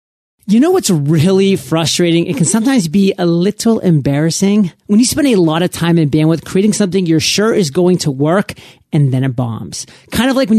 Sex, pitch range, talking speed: male, 150-190 Hz, 210 wpm